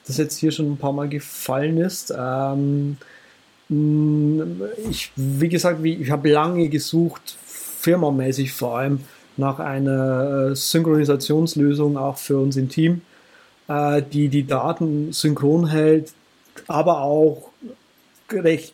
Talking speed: 110 wpm